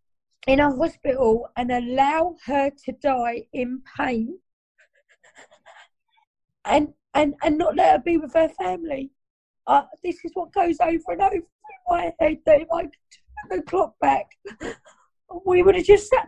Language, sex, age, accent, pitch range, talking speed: English, female, 30-49, British, 260-335 Hz, 160 wpm